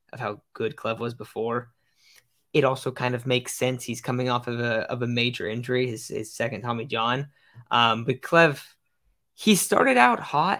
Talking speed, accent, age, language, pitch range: 185 wpm, American, 10-29, English, 120-140 Hz